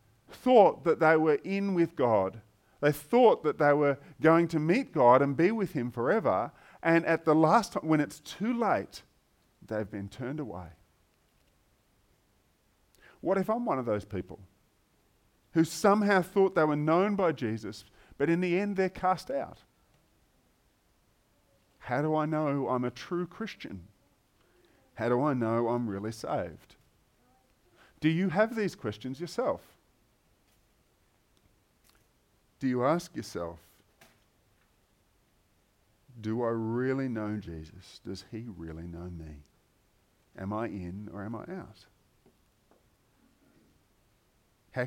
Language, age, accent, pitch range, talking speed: English, 40-59, Australian, 100-155 Hz, 130 wpm